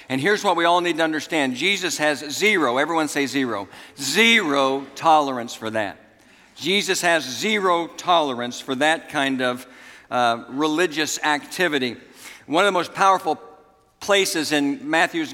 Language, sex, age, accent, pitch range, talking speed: English, male, 60-79, American, 140-175 Hz, 145 wpm